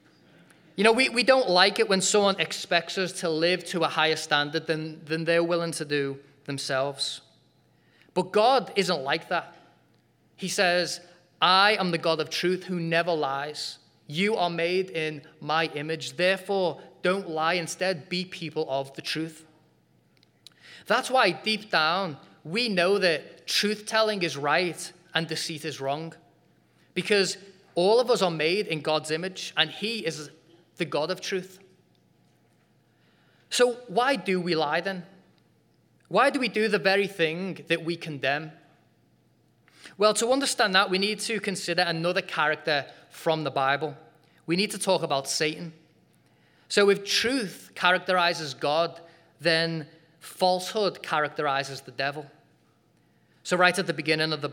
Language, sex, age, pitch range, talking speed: English, male, 20-39, 155-190 Hz, 150 wpm